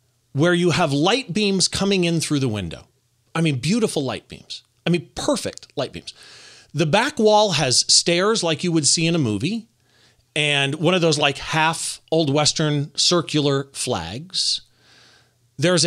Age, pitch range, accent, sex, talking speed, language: 30-49, 125-180 Hz, American, male, 165 wpm, English